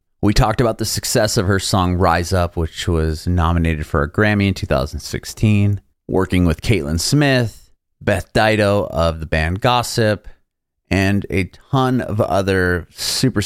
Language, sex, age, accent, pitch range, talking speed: English, male, 30-49, American, 85-110 Hz, 150 wpm